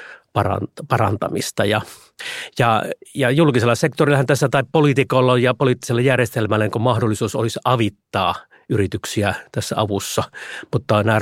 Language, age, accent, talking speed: Finnish, 30-49, native, 120 wpm